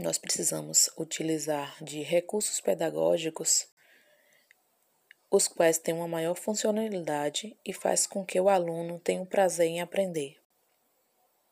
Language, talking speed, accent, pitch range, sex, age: Portuguese, 120 wpm, Brazilian, 150-185 Hz, female, 20-39